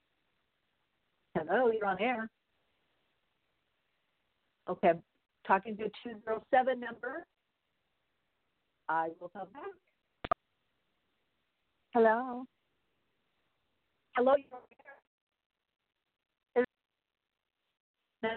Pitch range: 195-255 Hz